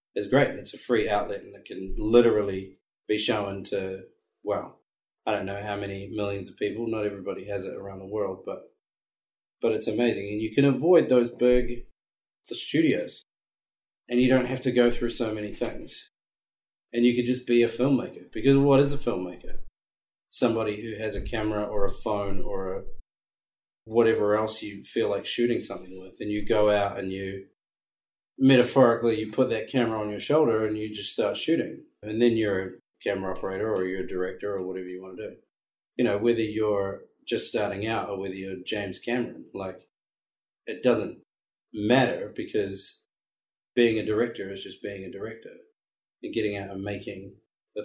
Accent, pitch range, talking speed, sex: Australian, 100-120 Hz, 185 wpm, male